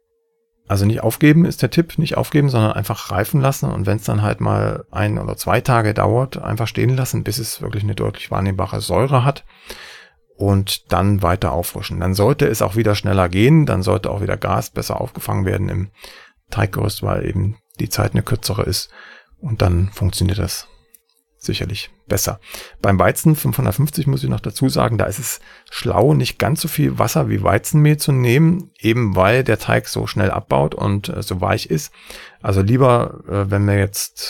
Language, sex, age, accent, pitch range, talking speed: German, male, 40-59, German, 100-130 Hz, 185 wpm